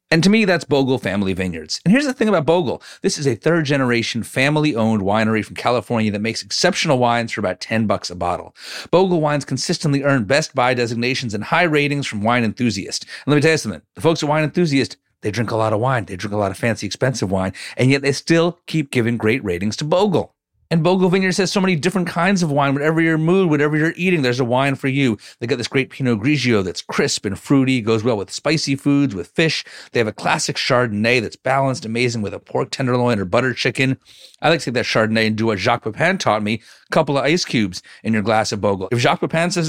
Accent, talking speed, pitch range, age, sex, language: American, 240 wpm, 110-165 Hz, 40-59, male, English